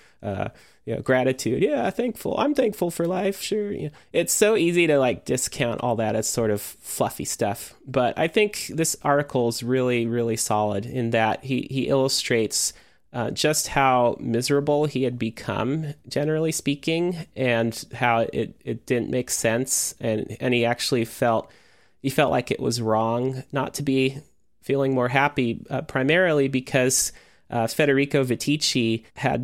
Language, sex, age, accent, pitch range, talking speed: English, male, 30-49, American, 110-140 Hz, 165 wpm